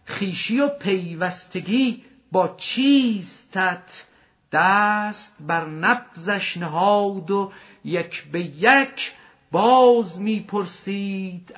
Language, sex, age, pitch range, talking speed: Persian, male, 50-69, 185-245 Hz, 80 wpm